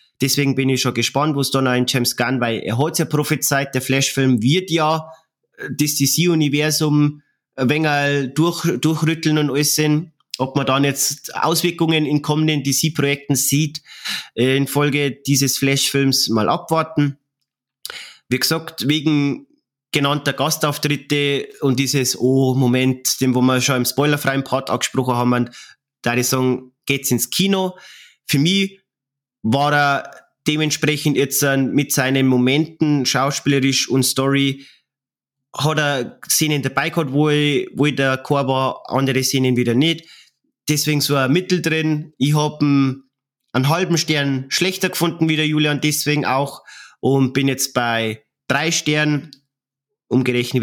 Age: 20-39